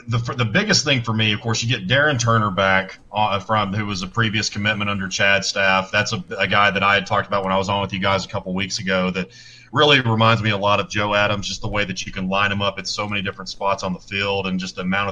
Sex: male